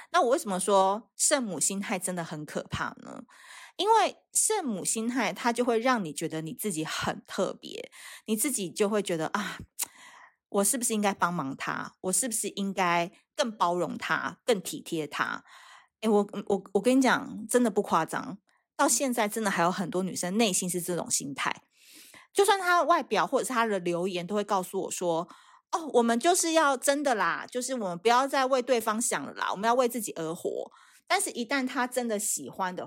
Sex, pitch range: female, 185-280 Hz